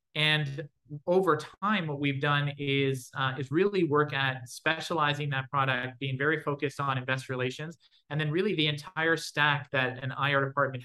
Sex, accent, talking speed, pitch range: male, American, 170 wpm, 135-150 Hz